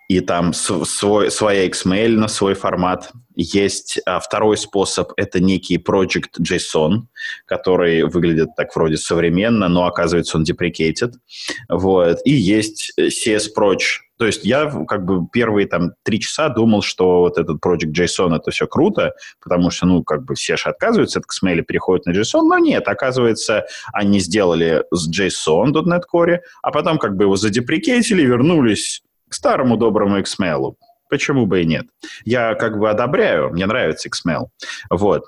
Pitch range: 85-120 Hz